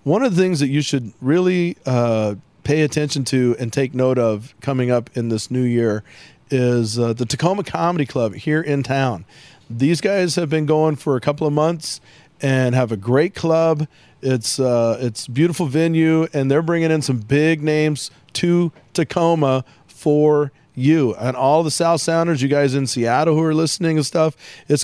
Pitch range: 125-160 Hz